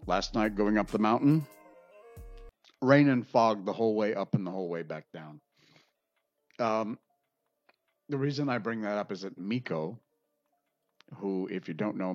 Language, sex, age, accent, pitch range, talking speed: English, male, 50-69, American, 85-115 Hz, 170 wpm